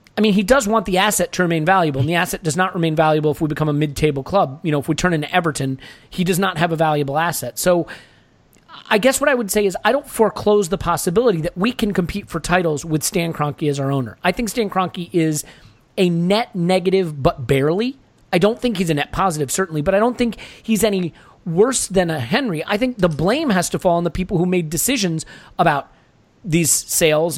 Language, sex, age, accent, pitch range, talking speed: English, male, 30-49, American, 150-190 Hz, 230 wpm